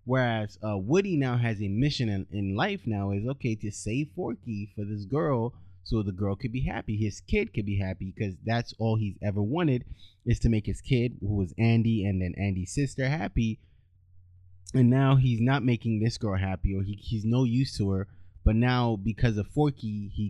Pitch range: 95-120 Hz